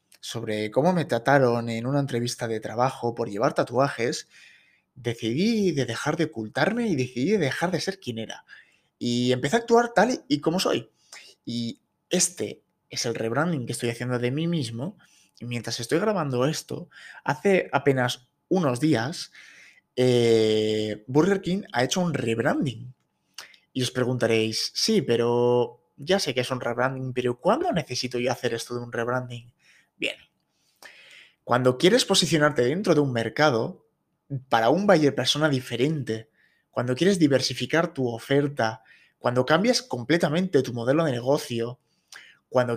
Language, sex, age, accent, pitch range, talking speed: Spanish, male, 20-39, Spanish, 120-155 Hz, 150 wpm